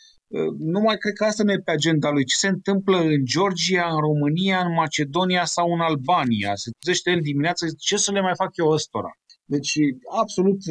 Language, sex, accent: Romanian, male, native